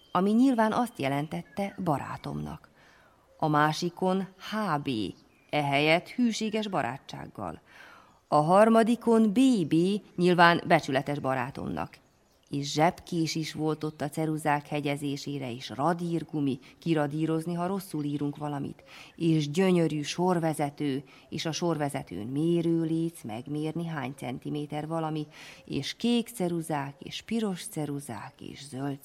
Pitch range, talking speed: 145-185 Hz, 105 wpm